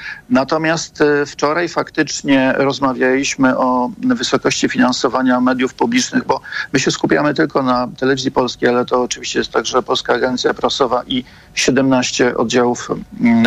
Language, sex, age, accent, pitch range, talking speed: Polish, male, 50-69, native, 125-145 Hz, 125 wpm